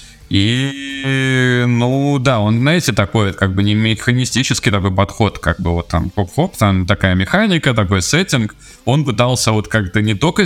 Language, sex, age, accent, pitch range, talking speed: Russian, male, 20-39, native, 100-140 Hz, 165 wpm